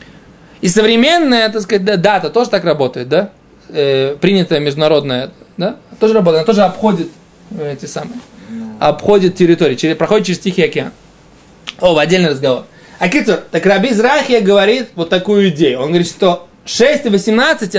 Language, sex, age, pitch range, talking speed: Russian, male, 20-39, 170-220 Hz, 150 wpm